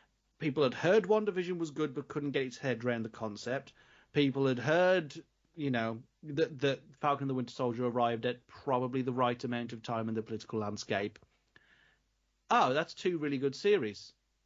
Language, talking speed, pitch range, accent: English, 185 wpm, 115-145 Hz, British